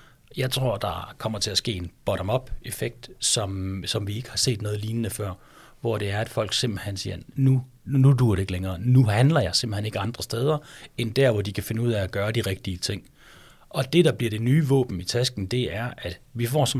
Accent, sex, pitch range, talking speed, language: native, male, 105-130 Hz, 235 wpm, Danish